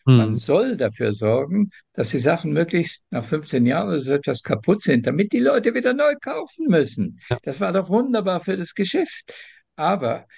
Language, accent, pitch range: German, German, 125-190 Hz